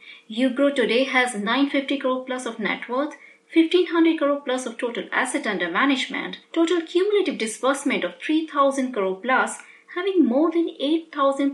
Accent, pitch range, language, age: Indian, 220-320 Hz, English, 30-49